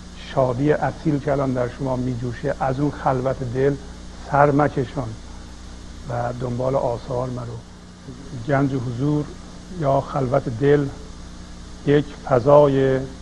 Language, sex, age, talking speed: Persian, male, 50-69, 100 wpm